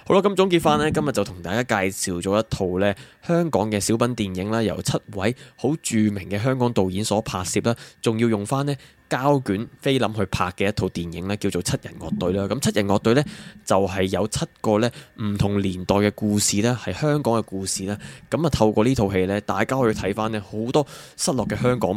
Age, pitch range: 20-39, 100-125 Hz